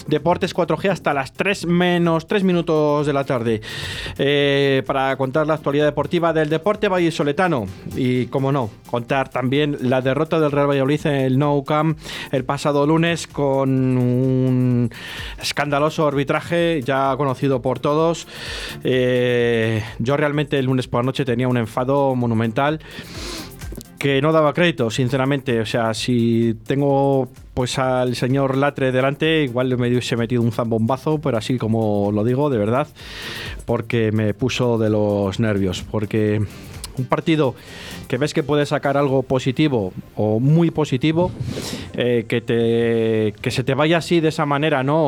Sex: male